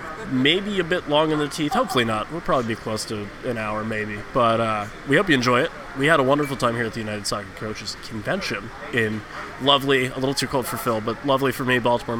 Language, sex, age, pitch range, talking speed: English, male, 20-39, 115-145 Hz, 240 wpm